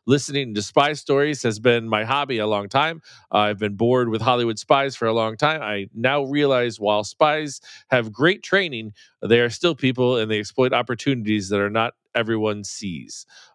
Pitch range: 110-140 Hz